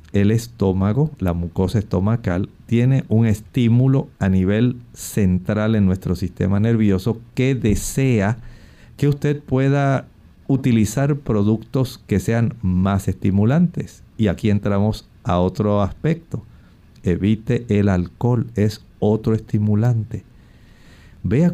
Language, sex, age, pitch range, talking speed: Spanish, male, 50-69, 100-130 Hz, 110 wpm